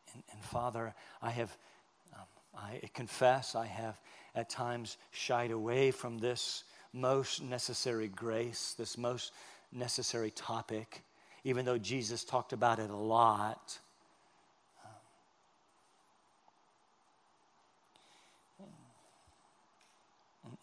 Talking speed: 95 wpm